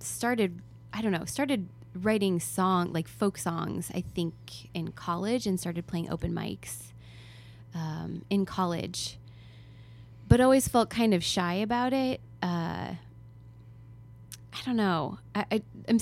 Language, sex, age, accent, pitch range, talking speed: English, female, 20-39, American, 115-195 Hz, 140 wpm